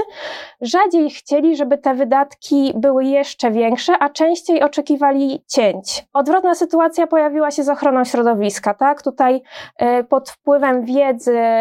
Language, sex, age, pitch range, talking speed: Polish, female, 20-39, 235-290 Hz, 130 wpm